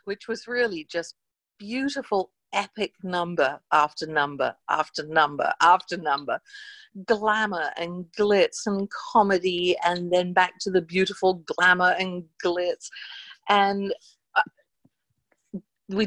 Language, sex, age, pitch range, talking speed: English, female, 50-69, 180-225 Hz, 110 wpm